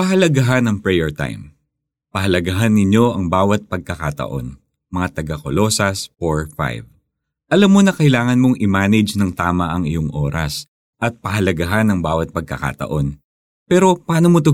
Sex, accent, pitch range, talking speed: male, native, 80-120 Hz, 135 wpm